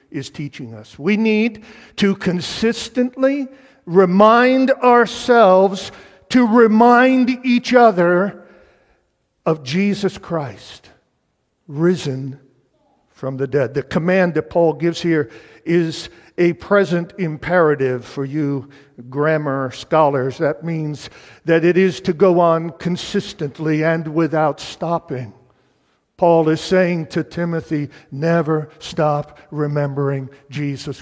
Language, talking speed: English, 105 wpm